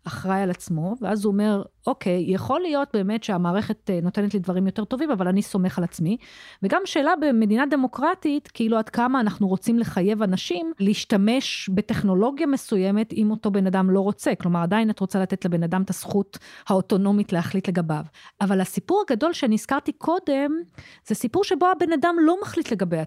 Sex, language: female, Hebrew